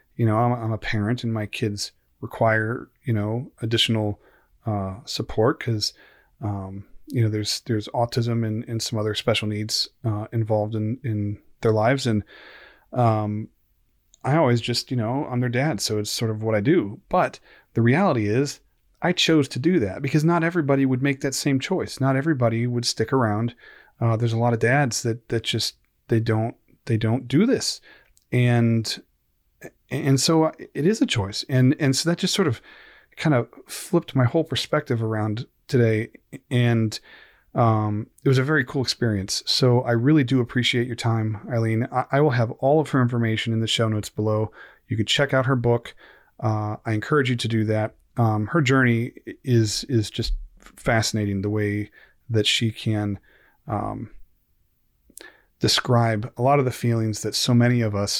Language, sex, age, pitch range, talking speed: English, male, 30-49, 110-130 Hz, 180 wpm